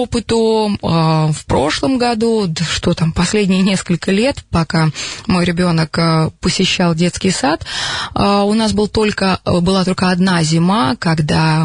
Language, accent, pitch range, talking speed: Russian, native, 170-215 Hz, 110 wpm